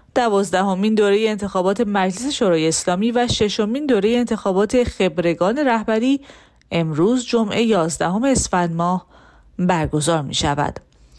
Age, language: 30-49, Persian